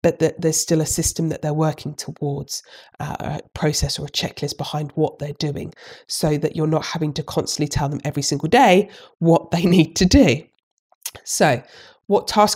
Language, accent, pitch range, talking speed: English, British, 160-185 Hz, 185 wpm